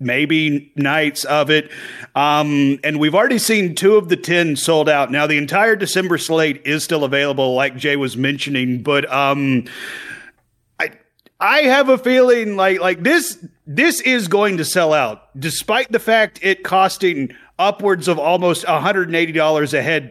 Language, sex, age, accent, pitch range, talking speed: English, male, 40-59, American, 145-190 Hz, 160 wpm